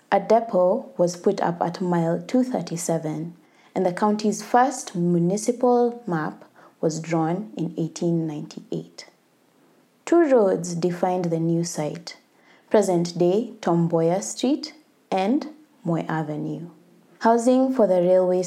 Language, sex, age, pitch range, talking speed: English, female, 20-39, 165-200 Hz, 110 wpm